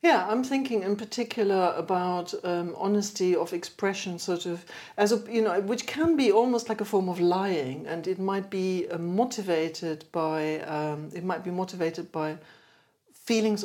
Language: English